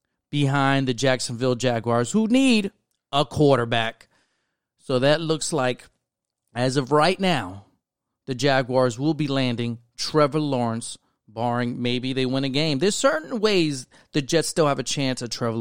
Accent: American